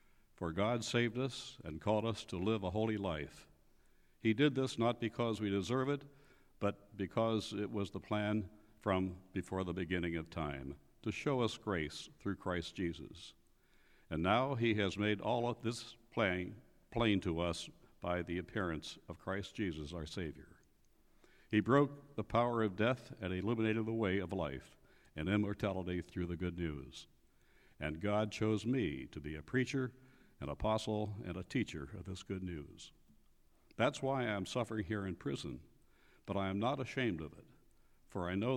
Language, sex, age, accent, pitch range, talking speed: English, male, 60-79, American, 90-115 Hz, 175 wpm